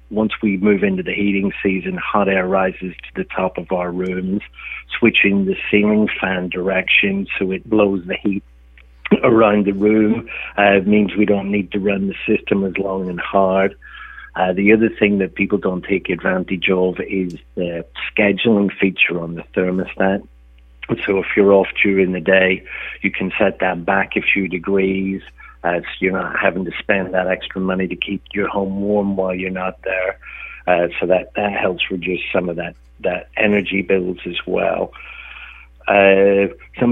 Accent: British